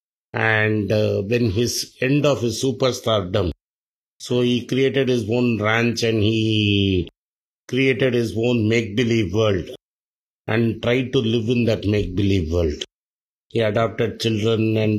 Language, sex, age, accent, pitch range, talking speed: Tamil, male, 50-69, native, 105-120 Hz, 145 wpm